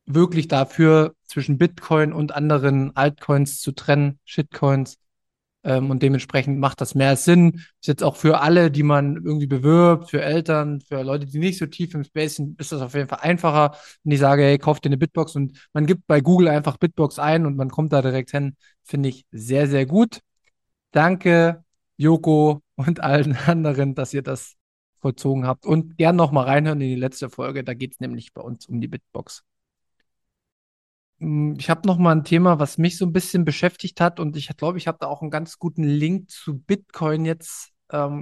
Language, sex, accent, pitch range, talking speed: German, male, German, 140-165 Hz, 195 wpm